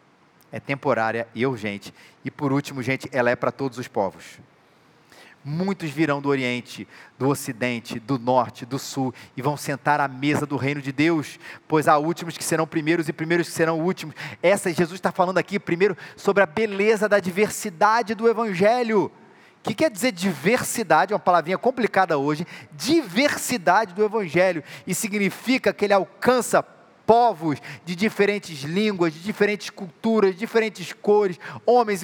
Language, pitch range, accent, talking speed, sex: Portuguese, 160-230 Hz, Brazilian, 165 wpm, male